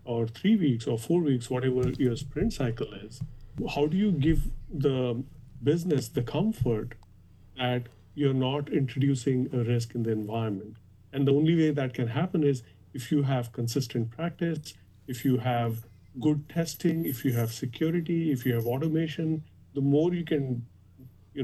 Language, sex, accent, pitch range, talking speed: English, male, Indian, 115-145 Hz, 165 wpm